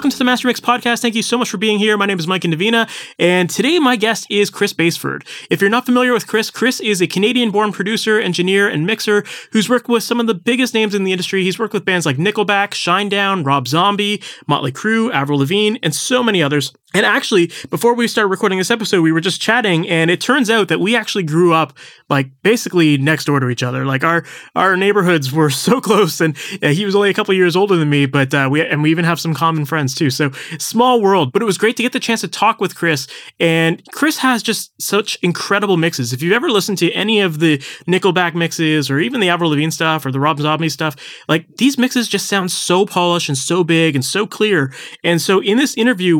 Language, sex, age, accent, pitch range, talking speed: English, male, 20-39, American, 155-210 Hz, 240 wpm